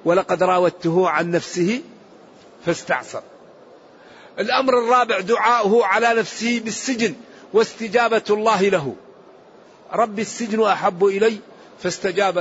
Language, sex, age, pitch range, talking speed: English, male, 50-69, 185-225 Hz, 90 wpm